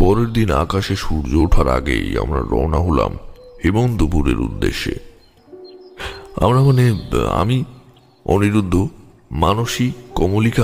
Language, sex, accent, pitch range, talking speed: Bengali, male, native, 90-125 Hz, 95 wpm